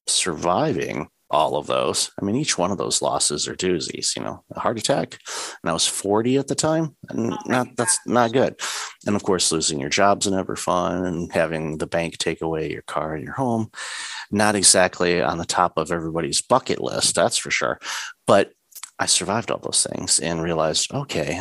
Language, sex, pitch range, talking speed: English, male, 80-100 Hz, 200 wpm